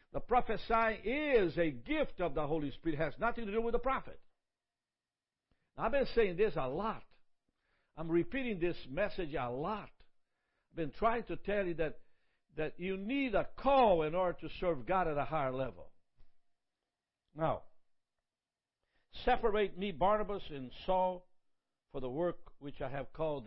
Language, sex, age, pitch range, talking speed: English, male, 60-79, 140-210 Hz, 160 wpm